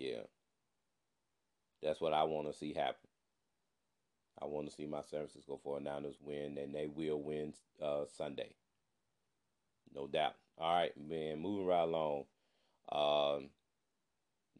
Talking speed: 130 wpm